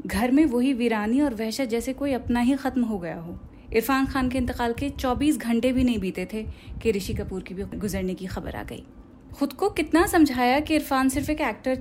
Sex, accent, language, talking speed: female, native, Hindi, 225 wpm